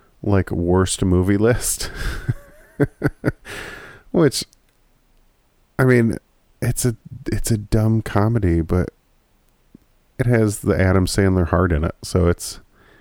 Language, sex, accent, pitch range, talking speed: English, male, American, 85-110 Hz, 110 wpm